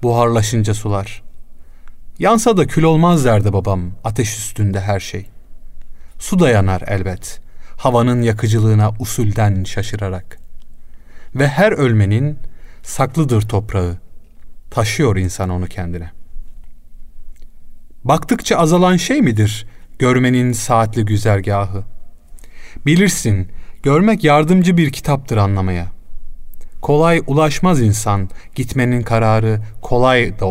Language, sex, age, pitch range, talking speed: Turkish, male, 40-59, 95-125 Hz, 95 wpm